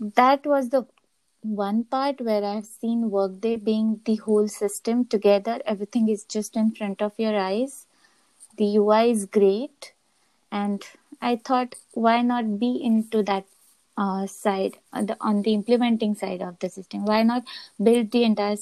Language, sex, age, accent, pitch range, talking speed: English, female, 20-39, Indian, 210-245 Hz, 160 wpm